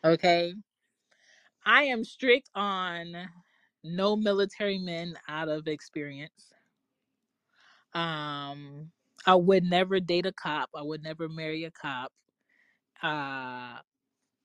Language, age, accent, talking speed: English, 20-39, American, 105 wpm